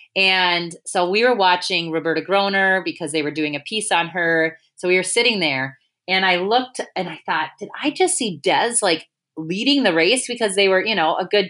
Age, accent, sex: 30-49, American, female